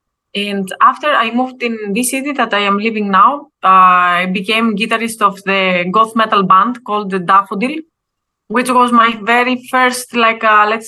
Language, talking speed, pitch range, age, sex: English, 170 wpm, 190-220 Hz, 20-39, female